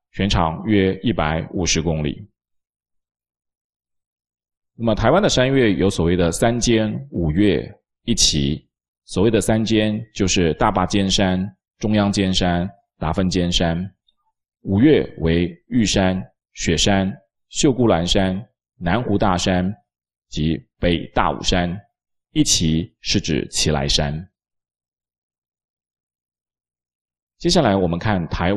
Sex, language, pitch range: male, Chinese, 70-100 Hz